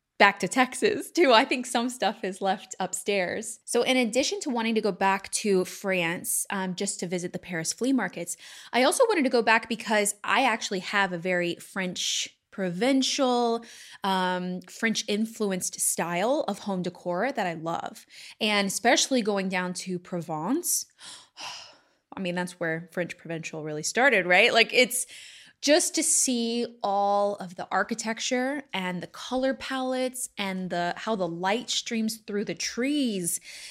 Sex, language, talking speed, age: female, English, 160 wpm, 20-39